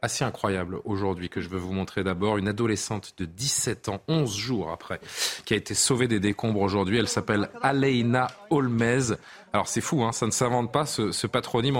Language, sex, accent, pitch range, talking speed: French, male, French, 105-130 Hz, 200 wpm